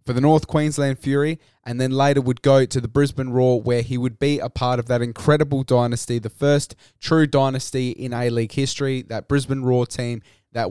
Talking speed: 200 wpm